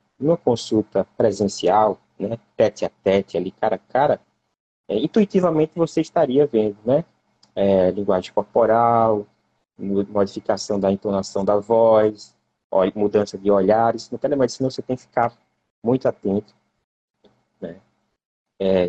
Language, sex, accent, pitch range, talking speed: Portuguese, male, Brazilian, 95-120 Hz, 115 wpm